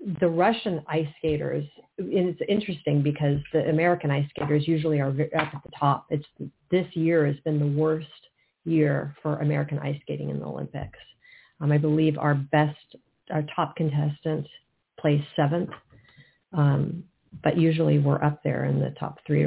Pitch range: 145-165 Hz